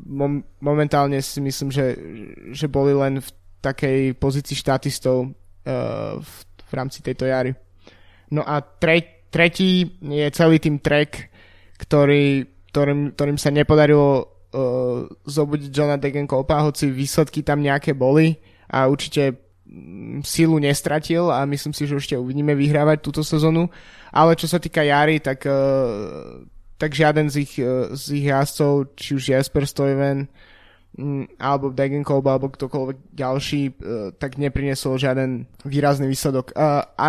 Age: 20-39